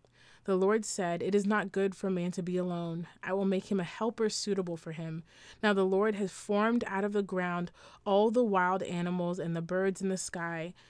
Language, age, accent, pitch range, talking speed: English, 20-39, American, 170-200 Hz, 220 wpm